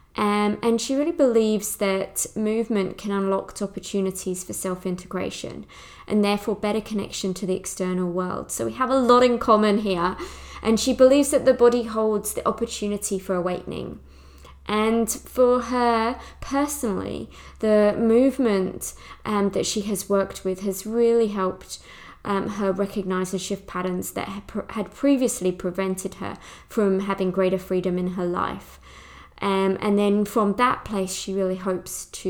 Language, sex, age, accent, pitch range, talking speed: English, female, 20-39, British, 185-220 Hz, 150 wpm